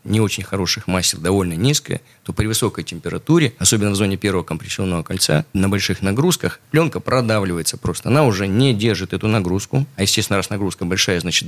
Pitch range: 100-125 Hz